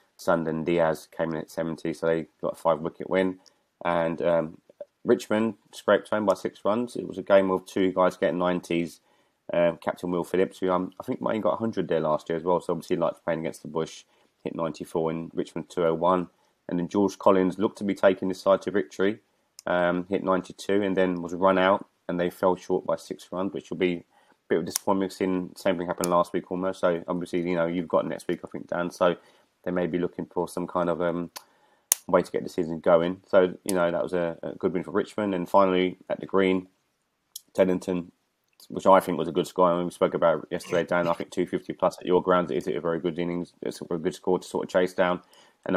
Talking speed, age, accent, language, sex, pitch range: 235 wpm, 20-39, British, English, male, 85-95 Hz